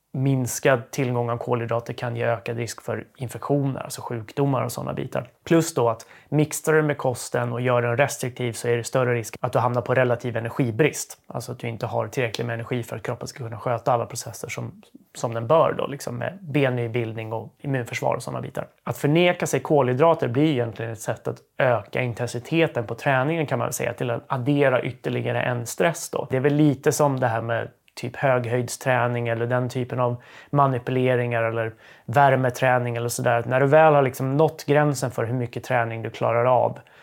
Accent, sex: native, male